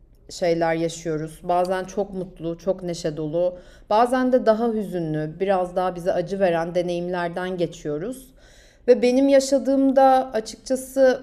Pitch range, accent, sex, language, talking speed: 190-260 Hz, native, female, Turkish, 130 wpm